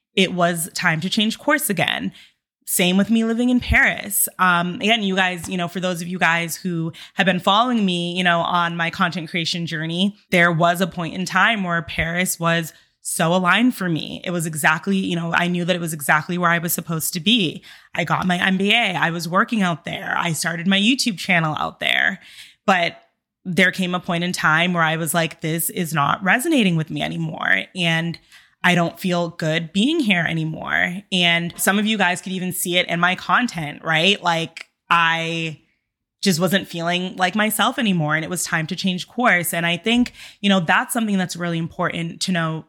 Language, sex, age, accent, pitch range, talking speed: English, female, 20-39, American, 170-200 Hz, 210 wpm